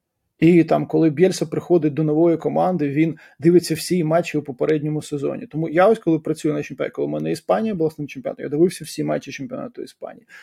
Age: 20-39